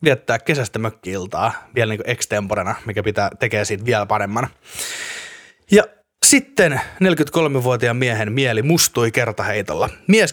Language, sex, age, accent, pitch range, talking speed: Finnish, male, 30-49, native, 110-155 Hz, 115 wpm